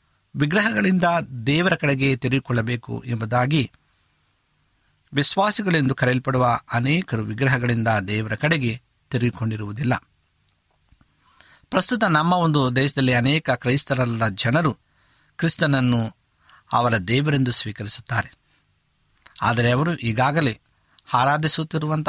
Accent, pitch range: native, 115-150 Hz